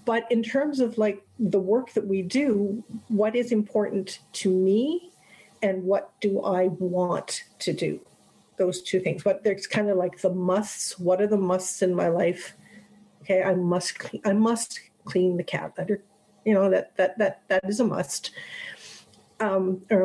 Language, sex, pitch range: English, female, 185-215 Hz